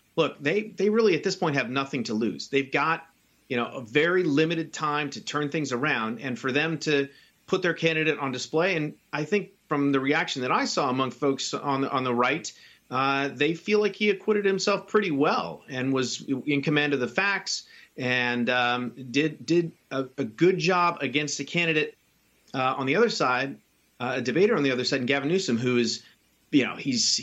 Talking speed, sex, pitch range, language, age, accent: 205 wpm, male, 130-165 Hz, English, 30-49, American